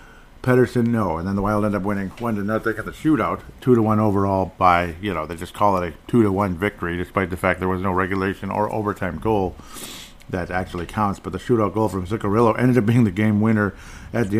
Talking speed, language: 220 wpm, English